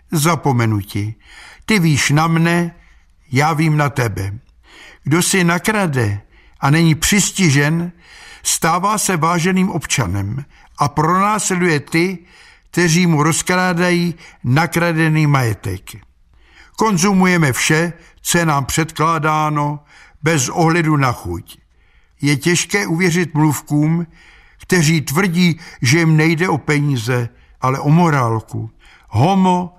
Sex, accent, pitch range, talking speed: male, native, 135-175 Hz, 105 wpm